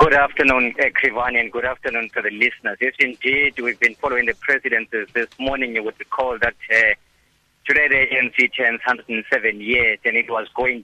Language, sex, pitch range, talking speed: English, male, 115-135 Hz, 190 wpm